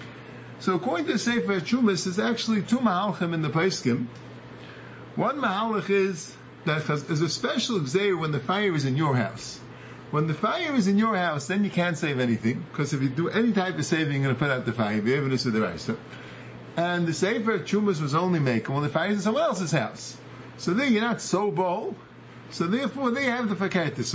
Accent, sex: American, male